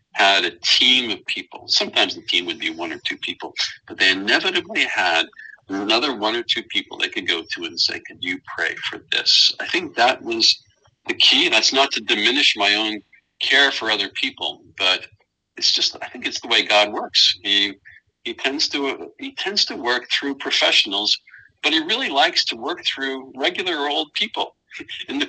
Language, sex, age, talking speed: English, male, 50-69, 195 wpm